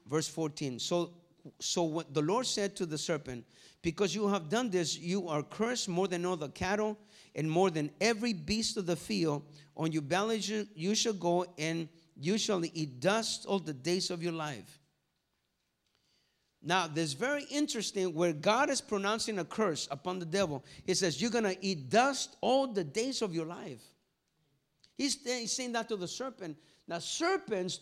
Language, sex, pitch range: English, male, 150-210 Hz